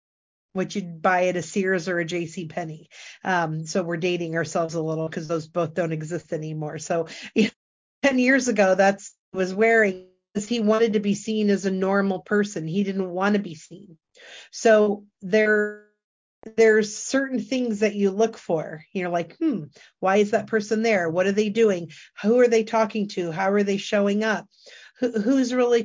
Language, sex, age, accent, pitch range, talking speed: English, female, 40-59, American, 180-220 Hz, 185 wpm